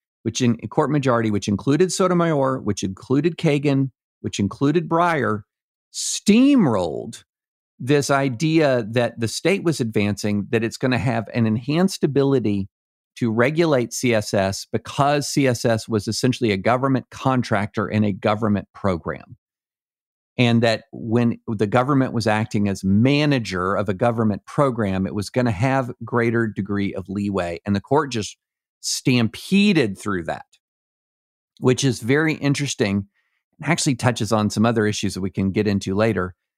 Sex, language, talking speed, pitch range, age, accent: male, English, 145 wpm, 105-135 Hz, 50-69, American